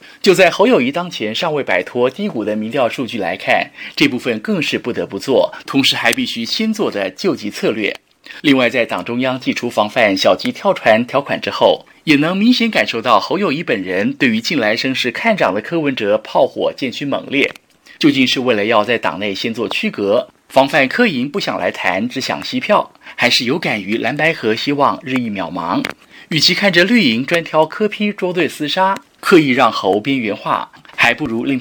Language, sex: Chinese, male